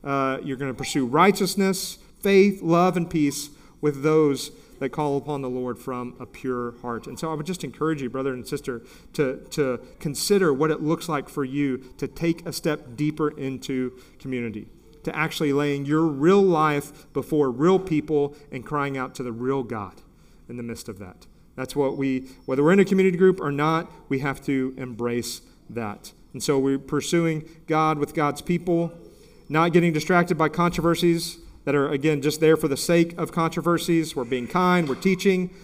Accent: American